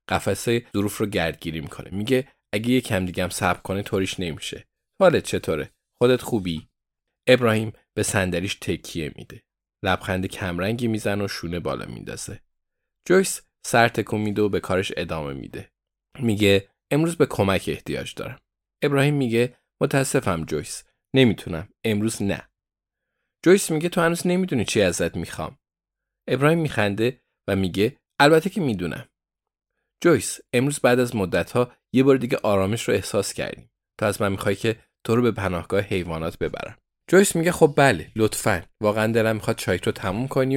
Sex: male